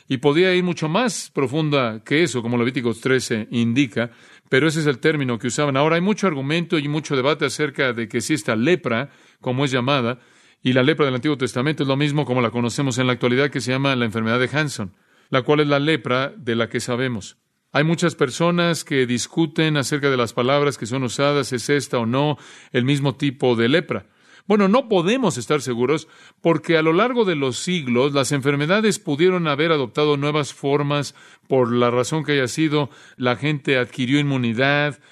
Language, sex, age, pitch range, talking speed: Spanish, male, 40-59, 125-155 Hz, 200 wpm